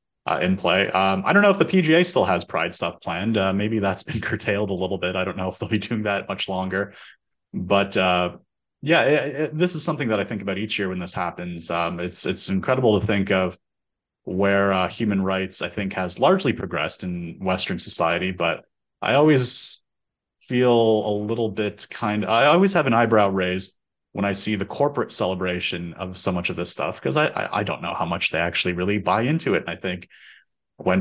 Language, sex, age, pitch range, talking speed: English, male, 30-49, 95-115 Hz, 220 wpm